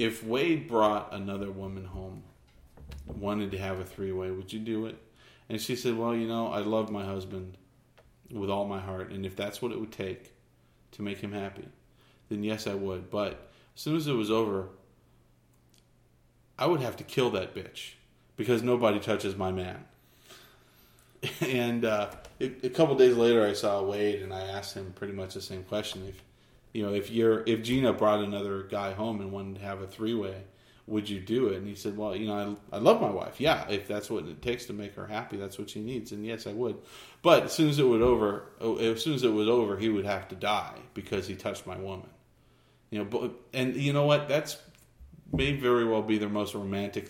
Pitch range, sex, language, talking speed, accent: 95-115 Hz, male, English, 215 wpm, American